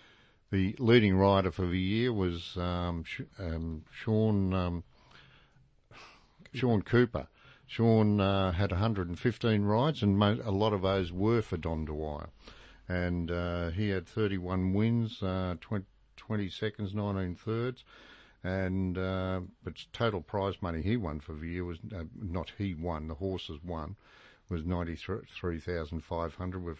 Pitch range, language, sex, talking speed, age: 85-105 Hz, English, male, 140 wpm, 50-69